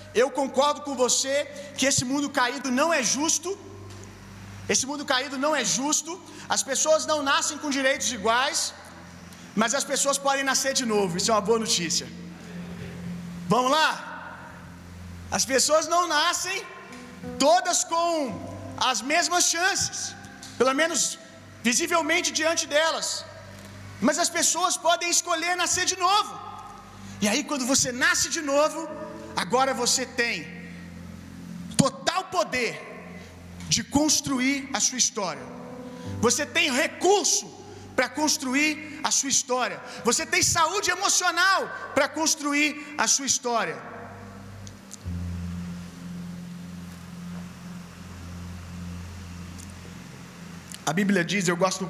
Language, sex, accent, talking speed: Gujarati, male, Brazilian, 115 wpm